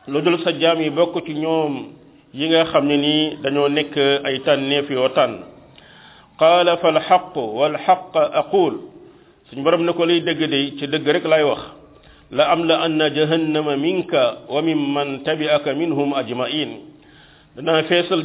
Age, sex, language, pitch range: 50-69, male, French, 145-165 Hz